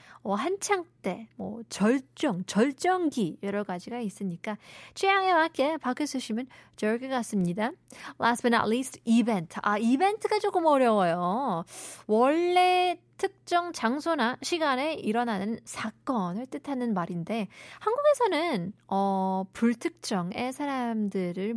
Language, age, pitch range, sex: Korean, 20-39, 200-275 Hz, female